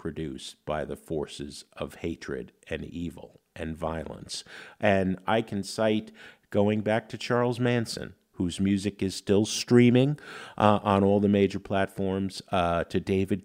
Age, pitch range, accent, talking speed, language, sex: 50-69, 80-105 Hz, American, 145 wpm, English, male